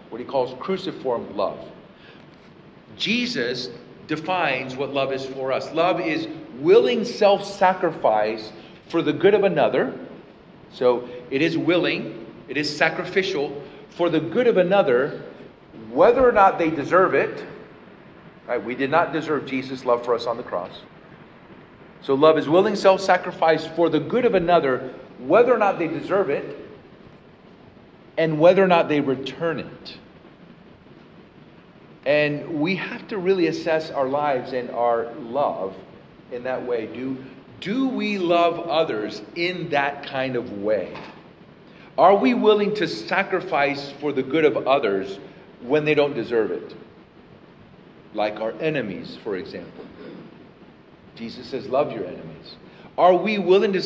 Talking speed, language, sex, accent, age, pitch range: 140 wpm, English, male, American, 50-69, 130-185 Hz